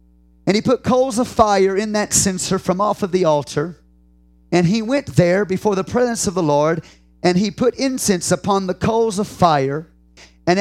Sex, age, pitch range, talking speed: male, 40-59, 145-200 Hz, 190 wpm